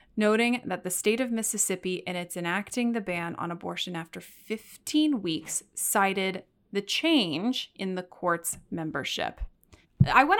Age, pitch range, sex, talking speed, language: 20-39, 175-250 Hz, female, 145 wpm, English